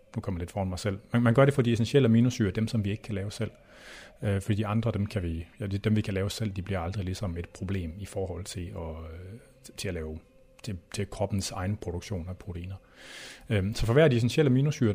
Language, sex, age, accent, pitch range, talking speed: Danish, male, 30-49, native, 95-120 Hz, 240 wpm